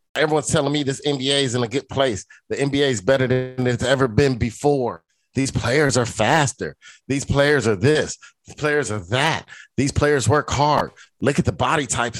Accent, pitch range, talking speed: American, 120-155 Hz, 195 wpm